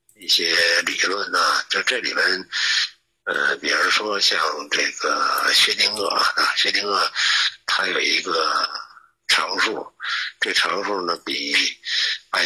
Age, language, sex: 60-79, Chinese, male